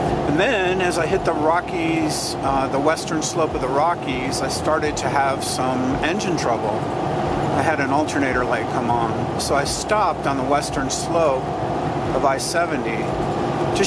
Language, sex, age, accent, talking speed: English, male, 50-69, American, 165 wpm